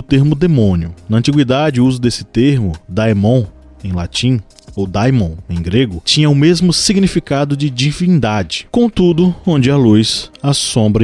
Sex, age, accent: male, 20-39, Brazilian